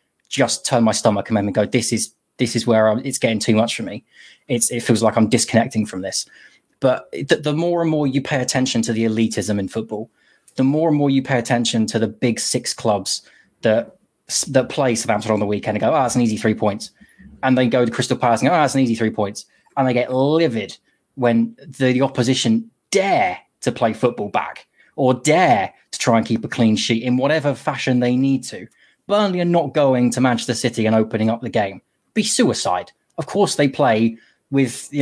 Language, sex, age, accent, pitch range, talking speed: English, male, 20-39, British, 115-140 Hz, 220 wpm